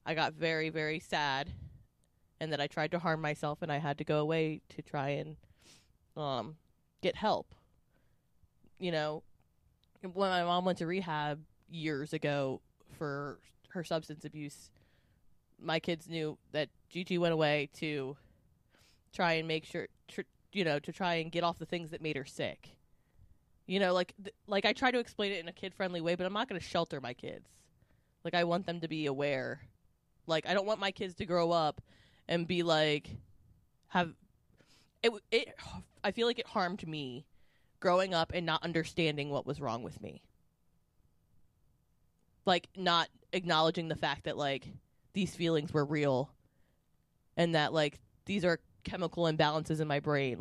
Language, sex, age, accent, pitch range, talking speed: English, female, 20-39, American, 145-175 Hz, 170 wpm